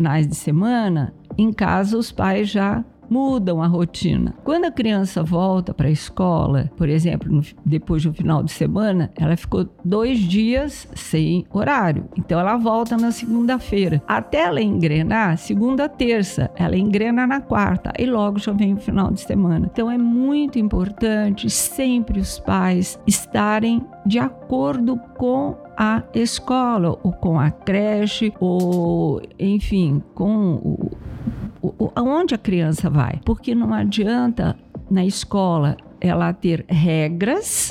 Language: Portuguese